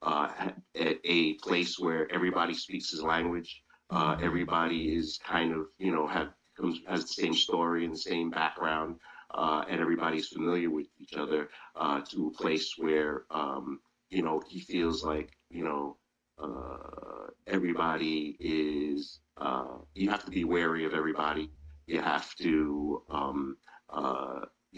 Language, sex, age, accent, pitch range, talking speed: English, male, 40-59, American, 75-85 Hz, 145 wpm